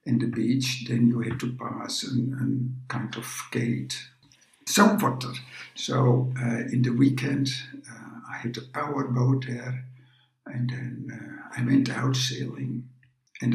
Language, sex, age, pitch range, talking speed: English, male, 60-79, 125-135 Hz, 150 wpm